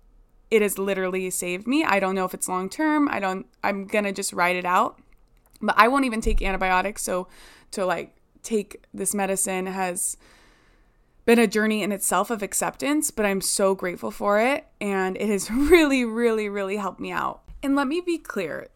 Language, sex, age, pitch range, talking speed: English, female, 20-39, 185-240 Hz, 190 wpm